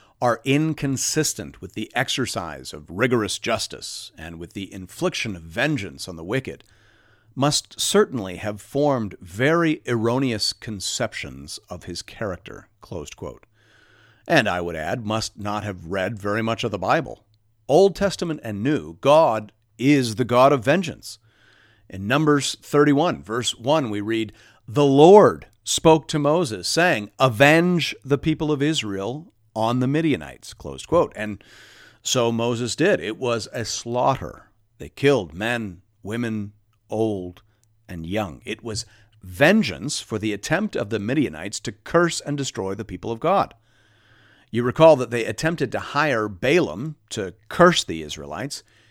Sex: male